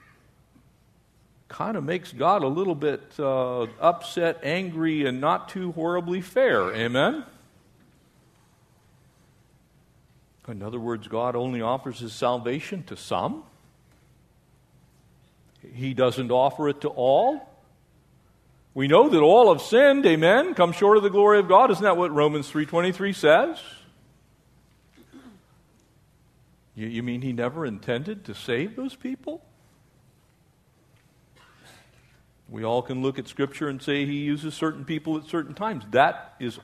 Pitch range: 130-185 Hz